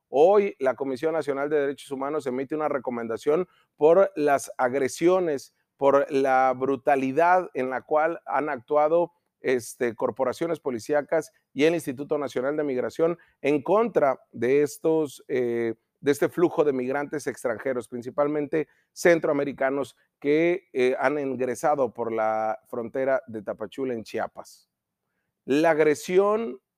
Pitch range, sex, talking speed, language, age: 130-160 Hz, male, 125 wpm, Spanish, 40-59